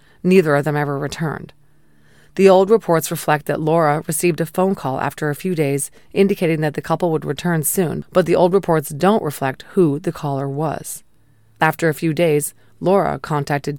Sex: female